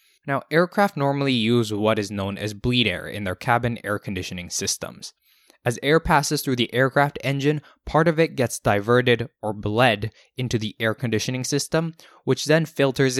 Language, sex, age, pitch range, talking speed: English, male, 20-39, 110-150 Hz, 175 wpm